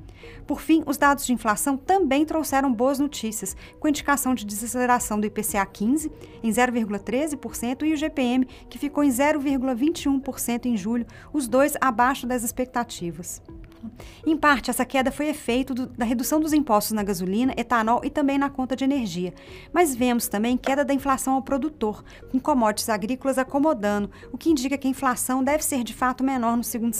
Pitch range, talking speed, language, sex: 225-275 Hz, 175 wpm, Portuguese, female